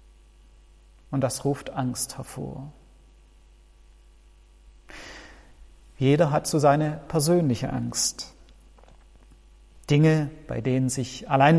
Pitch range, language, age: 115-155 Hz, German, 40-59